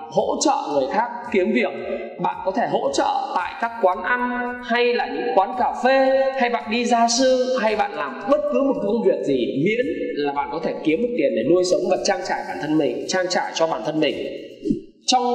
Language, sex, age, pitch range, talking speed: Vietnamese, male, 20-39, 180-265 Hz, 230 wpm